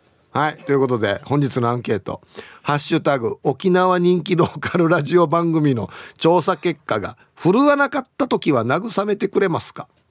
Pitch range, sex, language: 130-190 Hz, male, Japanese